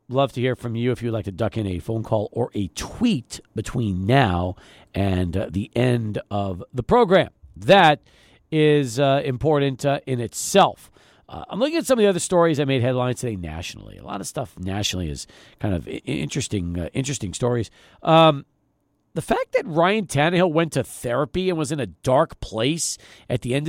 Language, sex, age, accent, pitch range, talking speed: English, male, 50-69, American, 125-190 Hz, 195 wpm